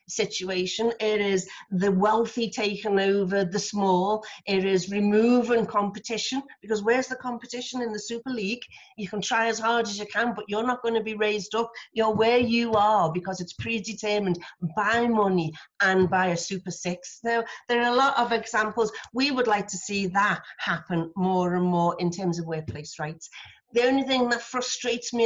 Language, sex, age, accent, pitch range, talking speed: English, female, 40-59, British, 185-225 Hz, 190 wpm